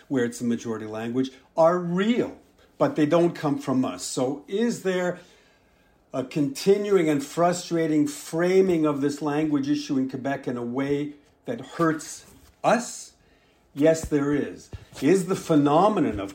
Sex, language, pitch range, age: male, English, 135-170 Hz, 50-69